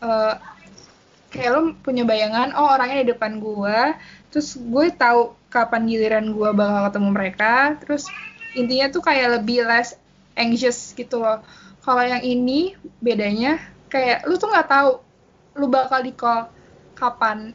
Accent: native